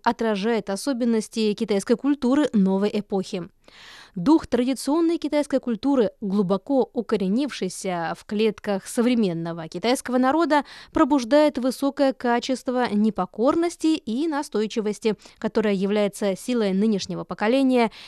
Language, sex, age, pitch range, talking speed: Russian, female, 20-39, 200-265 Hz, 95 wpm